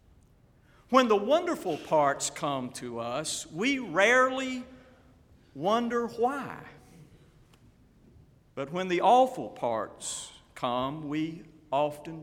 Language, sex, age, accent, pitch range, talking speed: English, male, 50-69, American, 140-205 Hz, 95 wpm